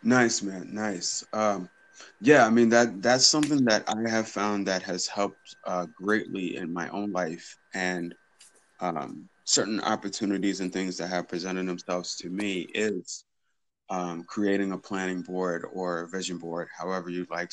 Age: 20-39